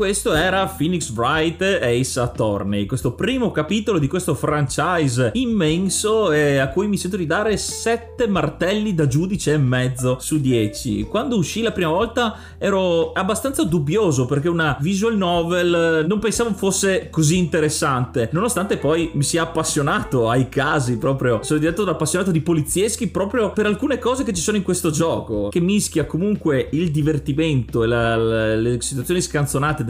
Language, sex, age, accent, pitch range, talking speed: Italian, male, 30-49, native, 135-175 Hz, 160 wpm